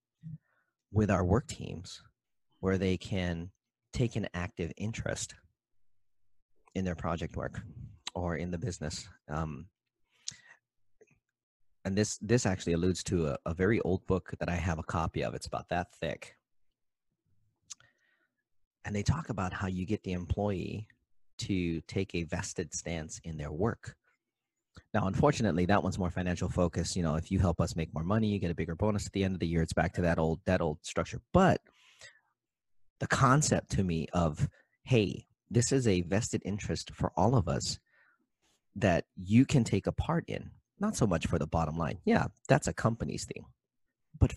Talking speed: 175 wpm